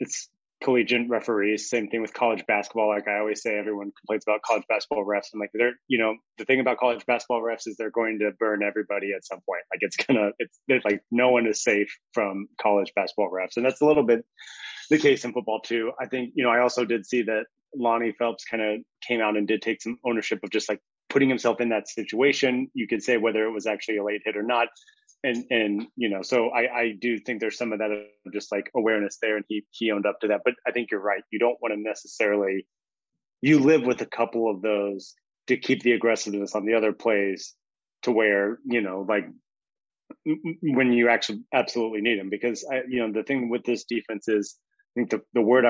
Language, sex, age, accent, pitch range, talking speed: English, male, 30-49, American, 105-120 Hz, 230 wpm